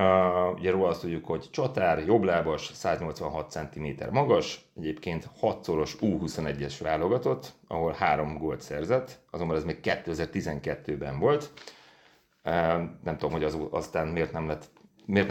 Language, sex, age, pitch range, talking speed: Hungarian, male, 30-49, 75-100 Hz, 135 wpm